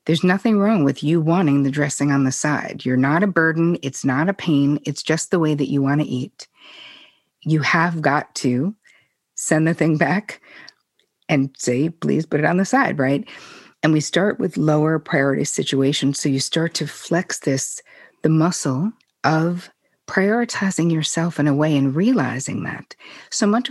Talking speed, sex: 180 wpm, female